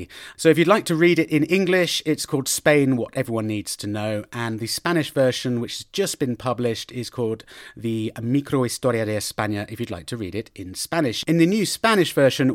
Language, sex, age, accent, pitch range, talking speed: English, male, 30-49, British, 125-160 Hz, 220 wpm